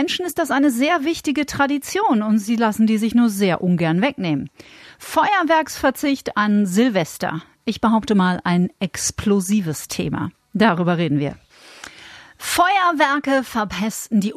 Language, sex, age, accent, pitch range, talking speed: German, female, 40-59, German, 185-265 Hz, 135 wpm